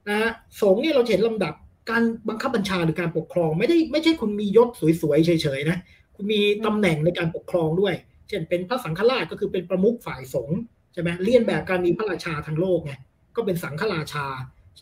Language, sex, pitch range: Thai, male, 160-215 Hz